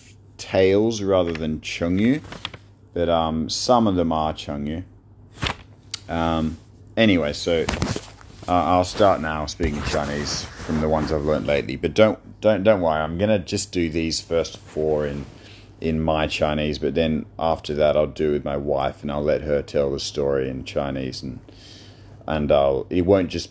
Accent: Australian